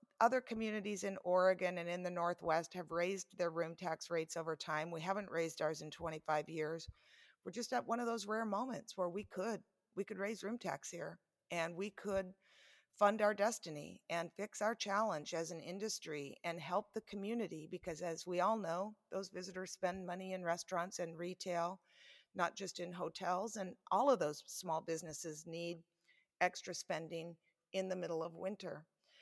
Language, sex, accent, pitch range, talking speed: English, female, American, 165-200 Hz, 180 wpm